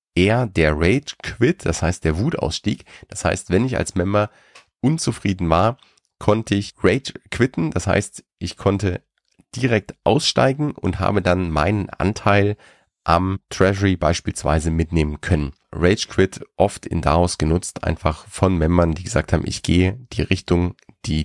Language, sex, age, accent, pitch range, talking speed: German, male, 30-49, German, 85-100 Hz, 150 wpm